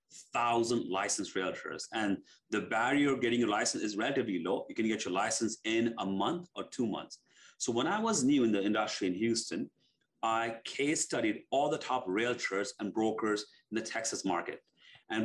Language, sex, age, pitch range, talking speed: English, male, 40-59, 115-145 Hz, 190 wpm